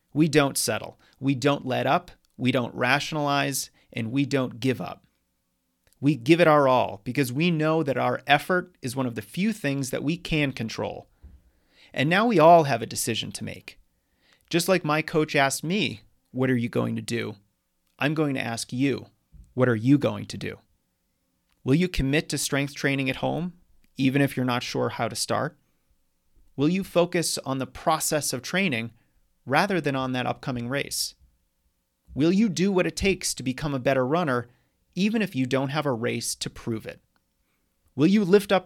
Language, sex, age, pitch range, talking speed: English, male, 30-49, 120-155 Hz, 190 wpm